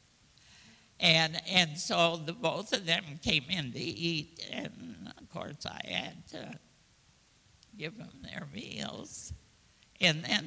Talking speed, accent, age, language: 130 wpm, American, 60-79, English